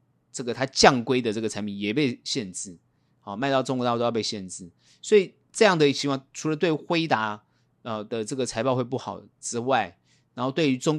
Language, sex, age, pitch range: Chinese, male, 30-49, 105-140 Hz